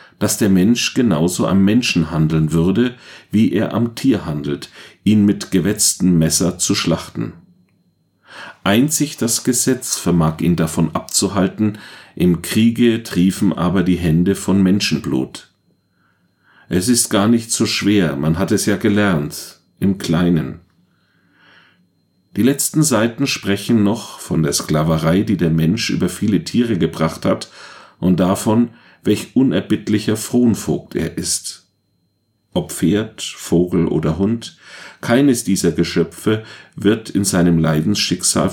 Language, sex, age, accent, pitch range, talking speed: German, male, 40-59, German, 85-110 Hz, 130 wpm